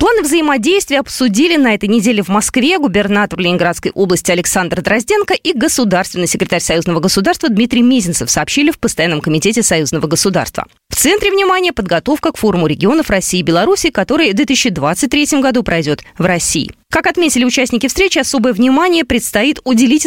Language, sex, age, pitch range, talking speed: Russian, female, 20-39, 180-295 Hz, 155 wpm